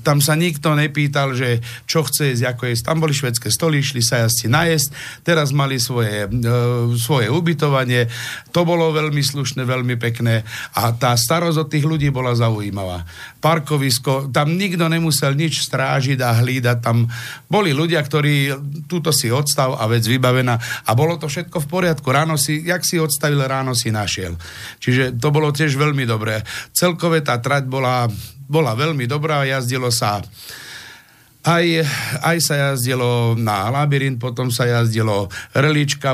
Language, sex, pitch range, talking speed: English, male, 120-150 Hz, 160 wpm